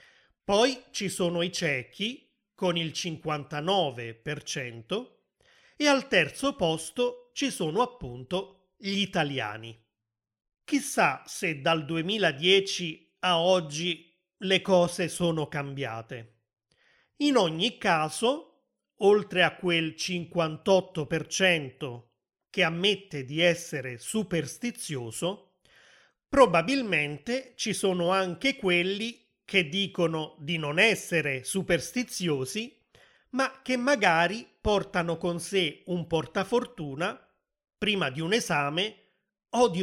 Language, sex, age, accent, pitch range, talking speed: Italian, male, 30-49, native, 155-205 Hz, 100 wpm